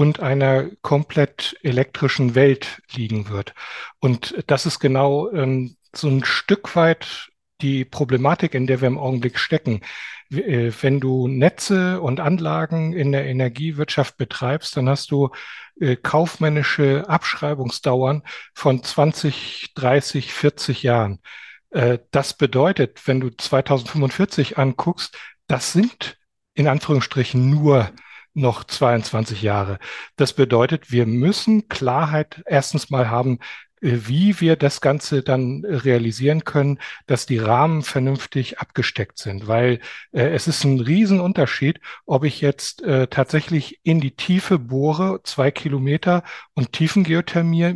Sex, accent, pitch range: male, German, 130-155 Hz